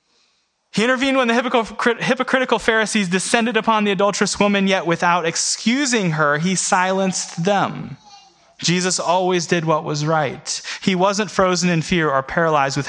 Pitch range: 145-220 Hz